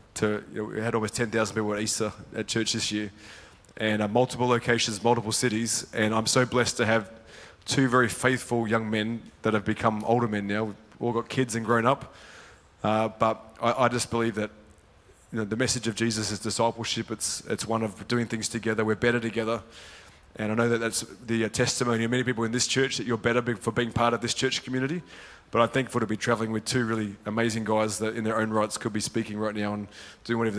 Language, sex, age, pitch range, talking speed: English, male, 20-39, 110-130 Hz, 230 wpm